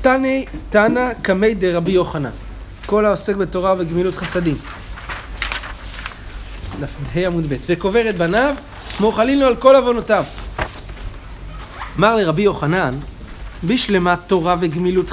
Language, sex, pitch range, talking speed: Hebrew, male, 150-205 Hz, 105 wpm